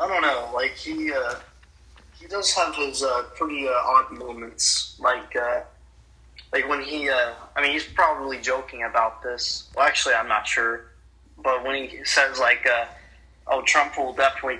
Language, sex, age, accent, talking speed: English, male, 20-39, American, 175 wpm